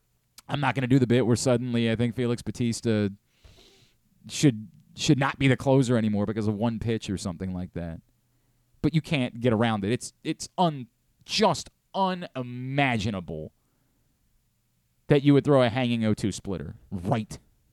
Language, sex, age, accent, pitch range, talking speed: English, male, 30-49, American, 115-175 Hz, 165 wpm